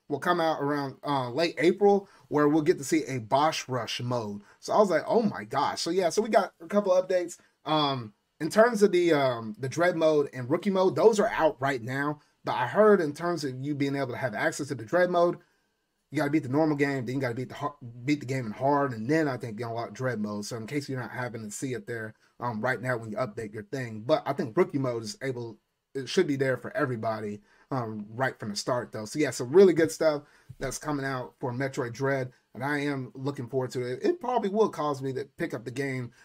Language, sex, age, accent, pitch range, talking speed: English, male, 30-49, American, 125-170 Hz, 260 wpm